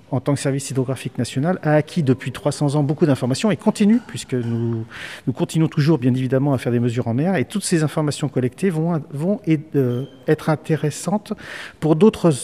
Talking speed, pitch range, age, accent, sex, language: 190 wpm, 120-155 Hz, 50-69, French, male, French